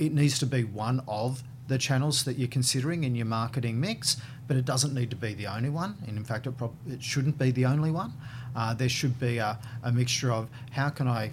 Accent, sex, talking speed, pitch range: Australian, male, 230 wpm, 115-130 Hz